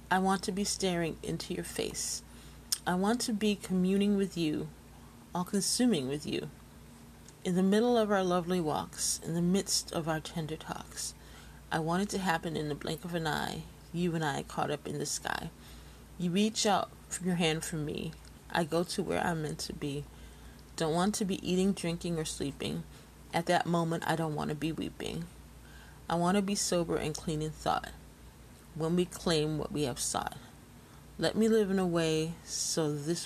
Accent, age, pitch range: American, 30-49, 155-205 Hz